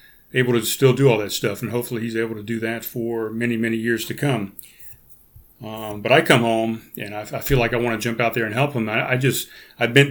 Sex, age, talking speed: male, 40-59, 260 wpm